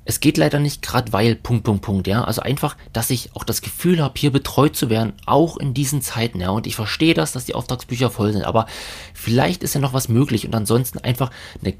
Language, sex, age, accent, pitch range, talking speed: German, male, 30-49, German, 95-130 Hz, 240 wpm